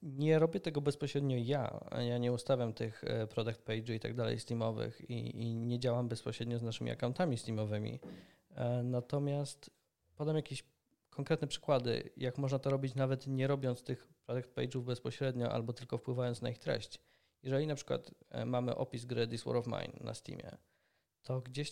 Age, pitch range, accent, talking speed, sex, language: 20-39, 120-140 Hz, native, 165 wpm, male, Polish